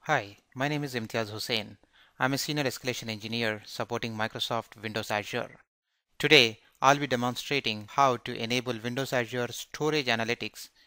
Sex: male